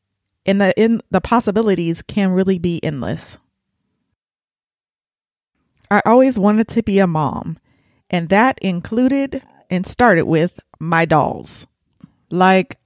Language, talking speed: English, 120 wpm